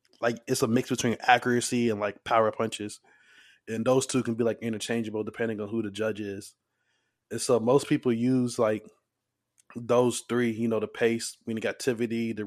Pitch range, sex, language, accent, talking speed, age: 110-120 Hz, male, English, American, 180 wpm, 20-39